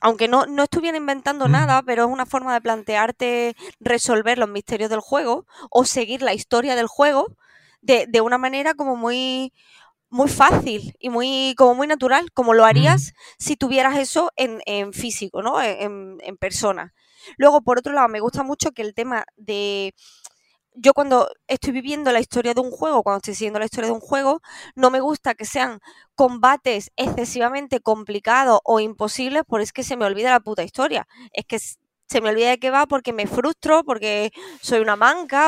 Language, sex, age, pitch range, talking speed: Spanish, female, 20-39, 225-275 Hz, 190 wpm